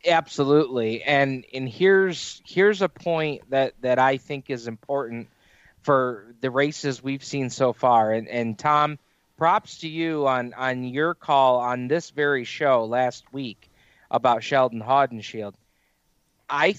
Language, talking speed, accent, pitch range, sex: English, 145 wpm, American, 125-155 Hz, male